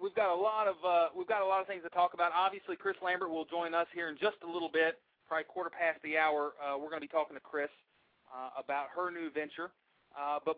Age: 40-59